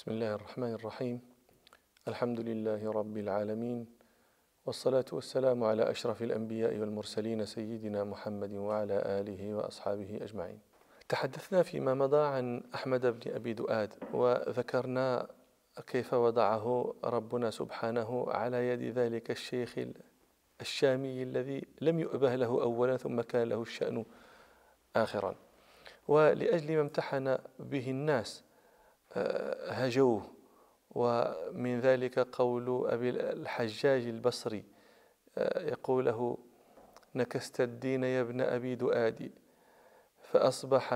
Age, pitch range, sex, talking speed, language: 40-59, 115-135 Hz, male, 100 wpm, English